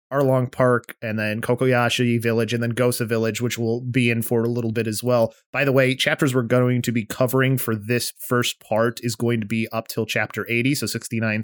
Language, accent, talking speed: English, American, 225 wpm